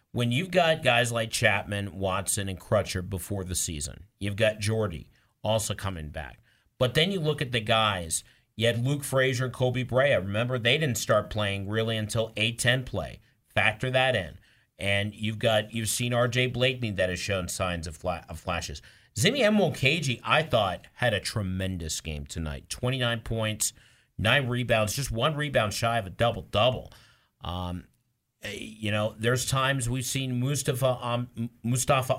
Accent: American